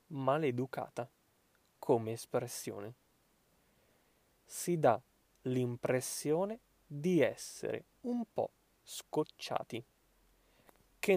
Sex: male